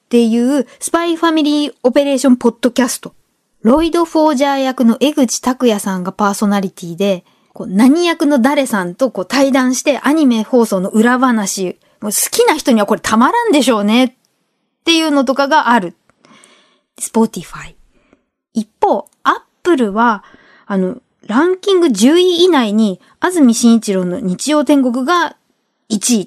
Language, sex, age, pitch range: Japanese, female, 20-39, 215-300 Hz